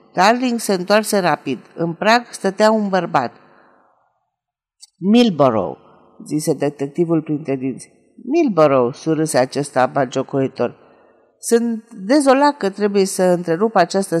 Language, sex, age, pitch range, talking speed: Romanian, female, 50-69, 155-210 Hz, 105 wpm